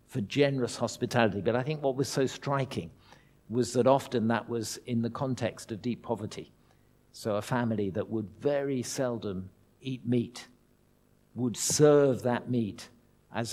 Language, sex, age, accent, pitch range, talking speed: English, male, 50-69, British, 110-140 Hz, 155 wpm